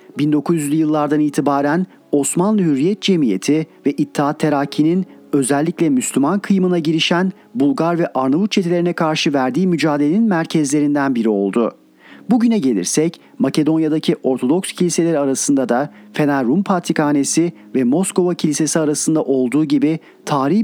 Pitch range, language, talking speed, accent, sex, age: 140-185 Hz, Turkish, 115 wpm, native, male, 40-59